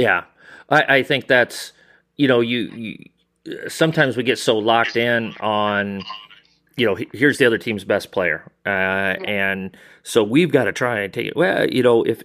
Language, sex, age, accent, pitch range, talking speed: English, male, 30-49, American, 100-125 Hz, 185 wpm